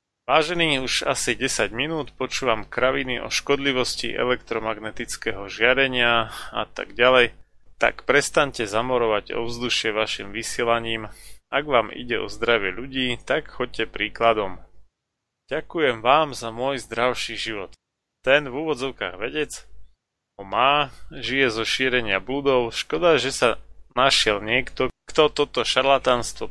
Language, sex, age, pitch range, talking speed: Slovak, male, 30-49, 110-130 Hz, 120 wpm